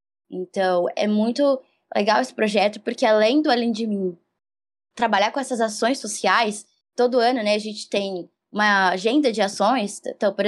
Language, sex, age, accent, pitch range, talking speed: Portuguese, female, 10-29, Brazilian, 190-255 Hz, 165 wpm